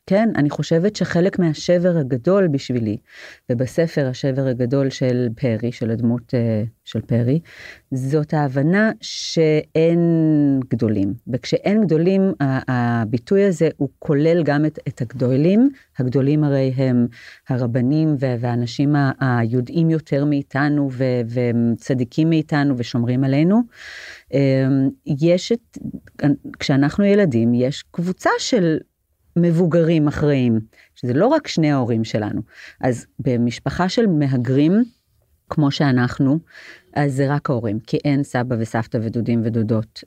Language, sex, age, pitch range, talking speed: Hebrew, female, 40-59, 125-155 Hz, 110 wpm